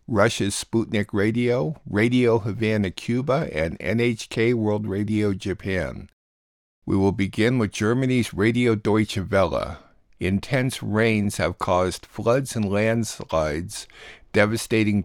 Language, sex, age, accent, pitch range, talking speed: English, male, 50-69, American, 95-115 Hz, 110 wpm